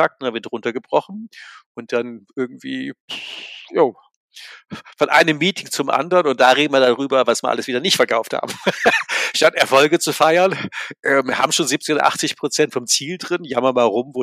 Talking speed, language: 175 wpm, German